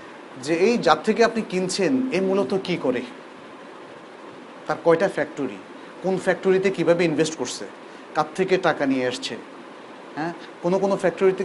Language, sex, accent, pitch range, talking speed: Bengali, male, native, 160-215 Hz, 140 wpm